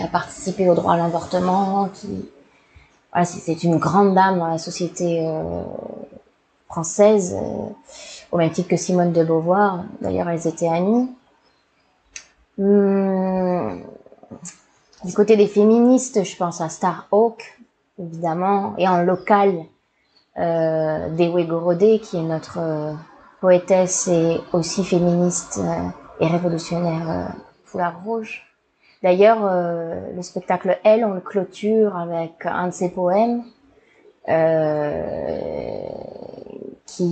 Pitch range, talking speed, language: 170-205 Hz, 120 wpm, French